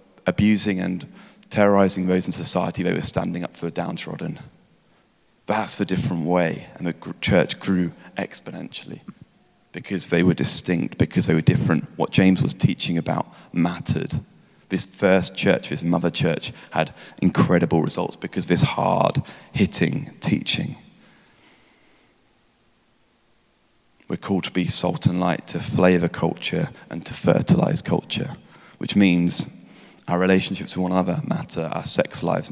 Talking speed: 140 wpm